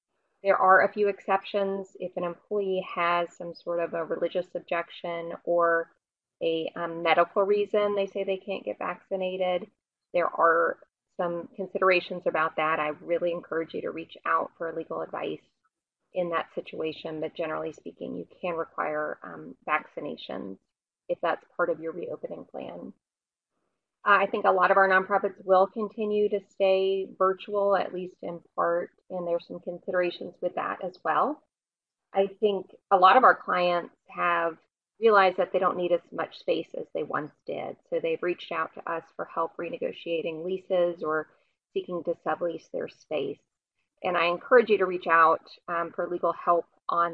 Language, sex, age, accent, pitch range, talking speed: English, female, 30-49, American, 165-195 Hz, 170 wpm